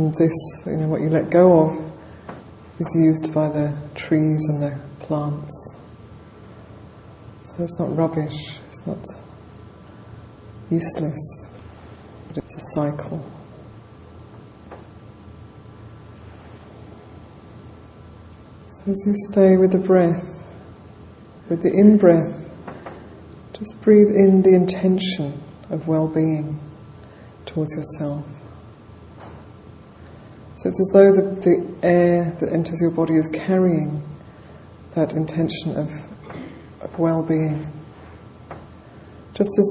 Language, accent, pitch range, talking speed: English, British, 110-165 Hz, 100 wpm